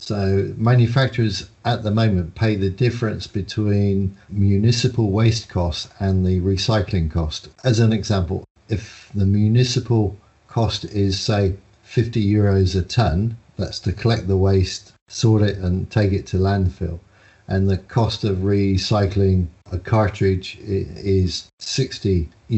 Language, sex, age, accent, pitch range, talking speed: English, male, 50-69, British, 95-110 Hz, 135 wpm